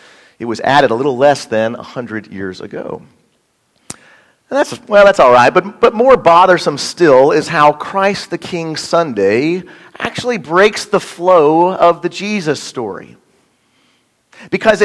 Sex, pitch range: male, 140-200 Hz